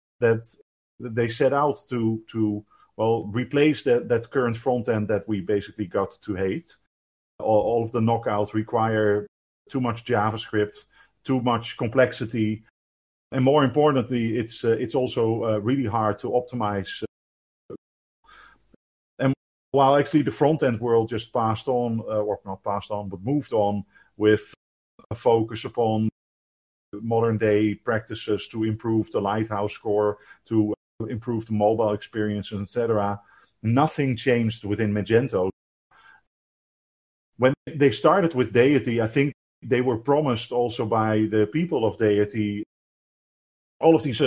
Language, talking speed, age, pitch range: English, 135 wpm, 50-69, 105-125 Hz